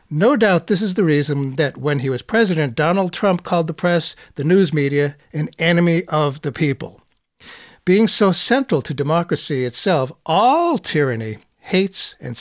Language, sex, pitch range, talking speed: English, male, 130-200 Hz, 165 wpm